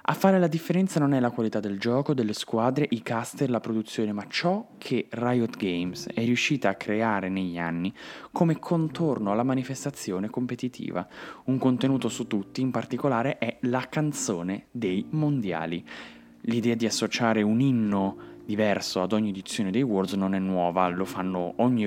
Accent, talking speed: native, 165 wpm